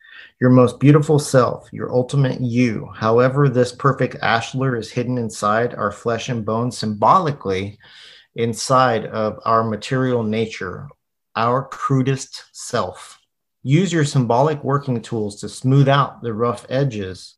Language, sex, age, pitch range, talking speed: English, male, 30-49, 110-135 Hz, 130 wpm